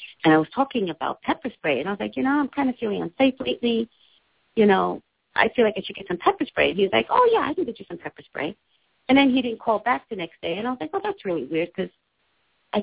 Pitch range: 150-215 Hz